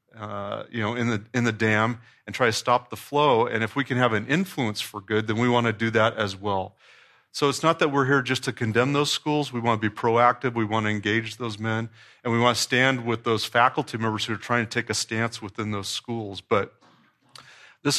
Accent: American